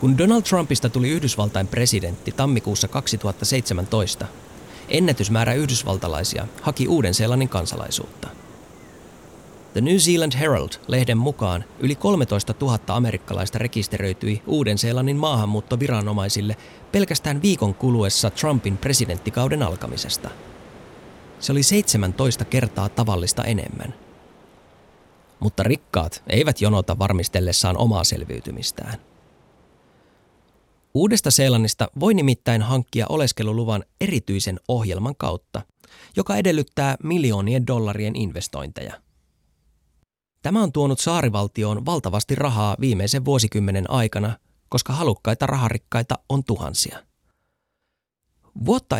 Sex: male